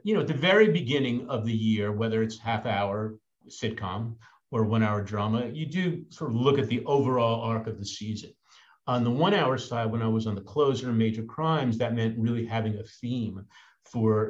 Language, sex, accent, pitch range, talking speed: English, male, American, 105-130 Hz, 215 wpm